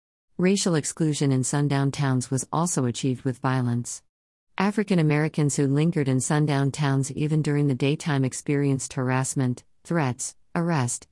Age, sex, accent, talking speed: 50-69, female, American, 135 wpm